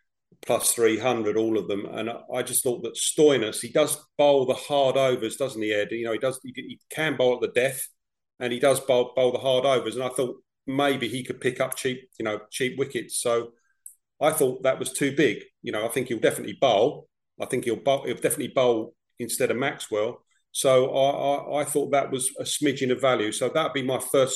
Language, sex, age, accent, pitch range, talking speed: English, male, 40-59, British, 120-140 Hz, 225 wpm